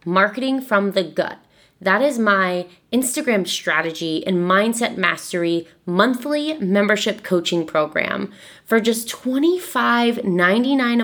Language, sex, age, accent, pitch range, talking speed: English, female, 20-39, American, 185-245 Hz, 105 wpm